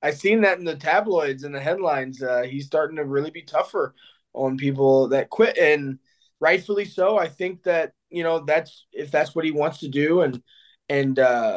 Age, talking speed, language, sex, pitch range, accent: 20-39, 195 wpm, English, male, 135-170 Hz, American